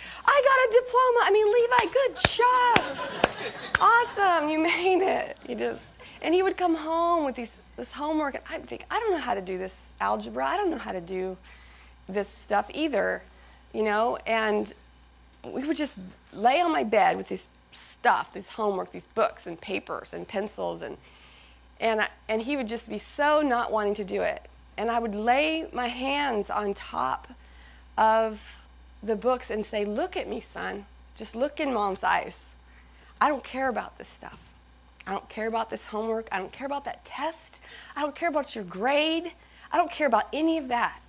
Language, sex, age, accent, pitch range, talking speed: English, female, 30-49, American, 190-300 Hz, 195 wpm